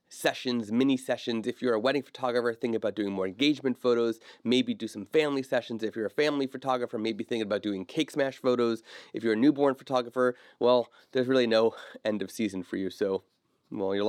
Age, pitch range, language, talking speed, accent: 30-49, 115-150 Hz, English, 205 wpm, American